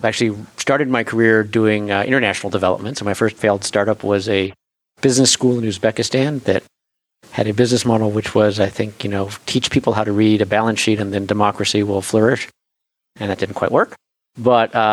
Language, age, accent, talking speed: English, 50-69, American, 200 wpm